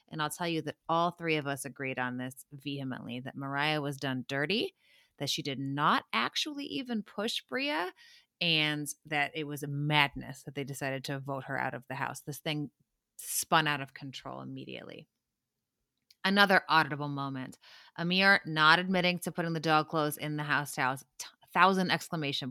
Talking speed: 175 wpm